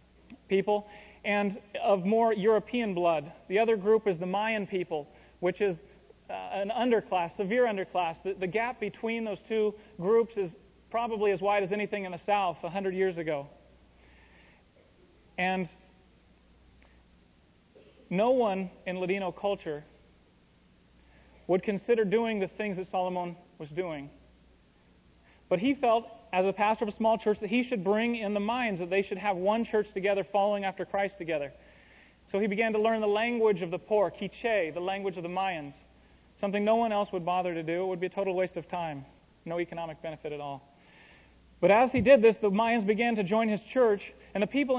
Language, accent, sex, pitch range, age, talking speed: English, American, male, 170-215 Hz, 30-49, 180 wpm